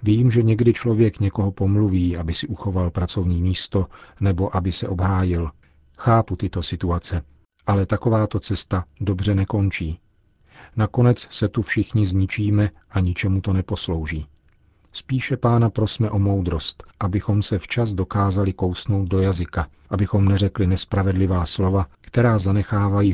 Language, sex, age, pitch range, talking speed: Czech, male, 40-59, 90-105 Hz, 130 wpm